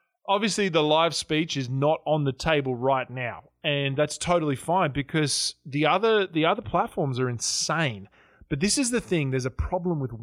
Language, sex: English, male